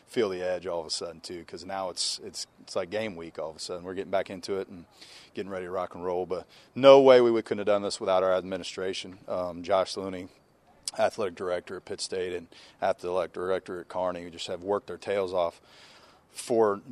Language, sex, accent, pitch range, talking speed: English, male, American, 90-105 Hz, 230 wpm